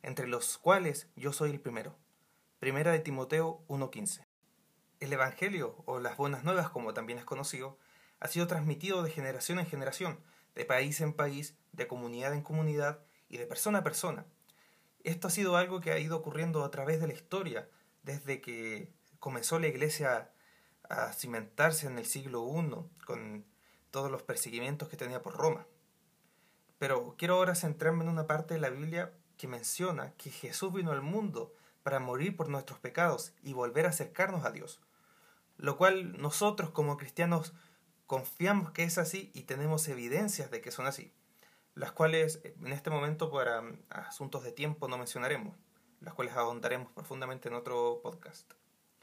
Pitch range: 140-175 Hz